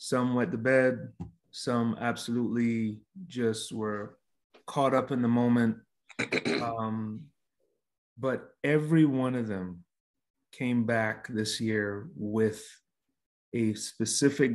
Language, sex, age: English, male, 30-49